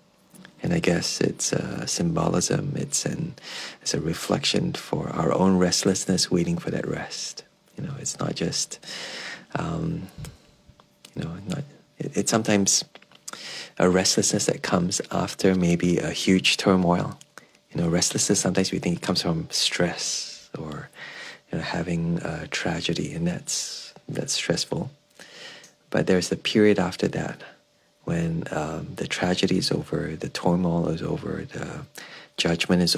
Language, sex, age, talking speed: English, male, 30-49, 145 wpm